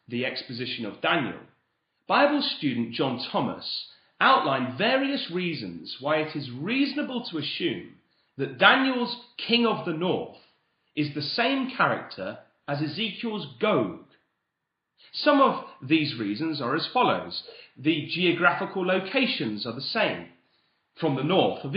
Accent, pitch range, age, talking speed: British, 150-230 Hz, 30-49, 130 wpm